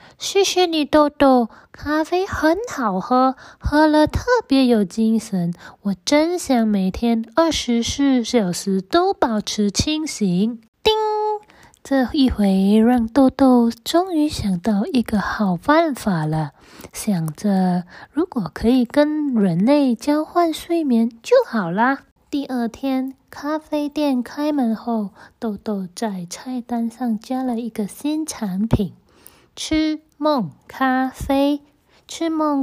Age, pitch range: 20-39, 210-300 Hz